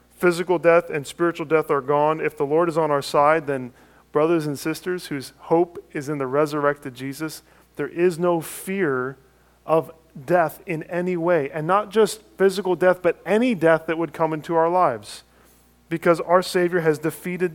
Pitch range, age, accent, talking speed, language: 130-170 Hz, 40-59, American, 180 wpm, English